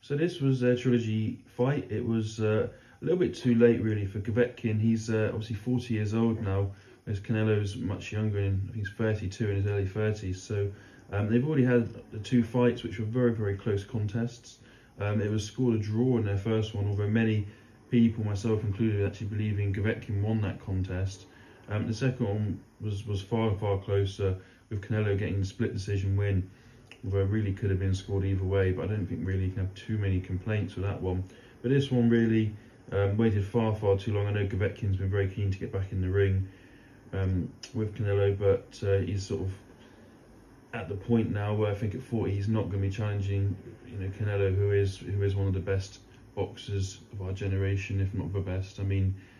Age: 20-39